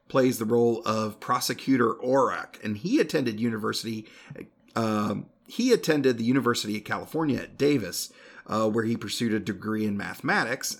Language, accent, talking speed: English, American, 150 wpm